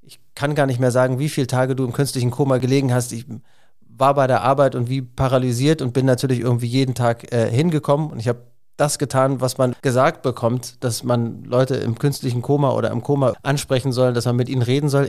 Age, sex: 30-49, male